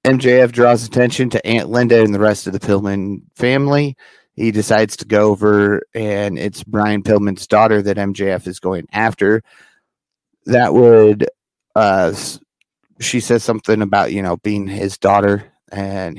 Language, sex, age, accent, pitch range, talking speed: English, male, 30-49, American, 100-115 Hz, 150 wpm